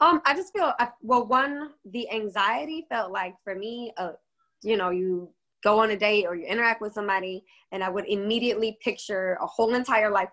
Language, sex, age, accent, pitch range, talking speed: English, female, 20-39, American, 185-225 Hz, 200 wpm